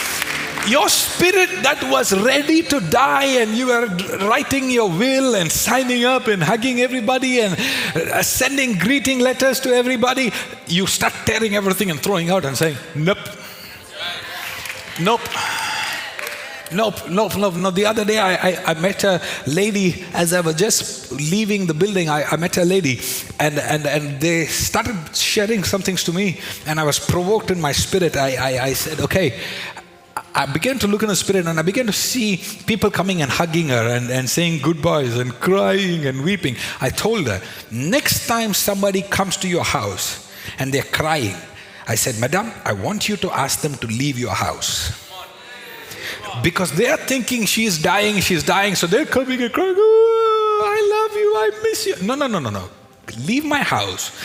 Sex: male